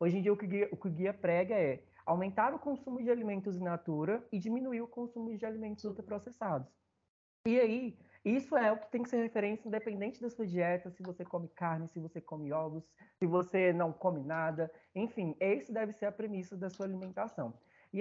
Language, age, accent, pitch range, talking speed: Portuguese, 20-39, Brazilian, 165-210 Hz, 205 wpm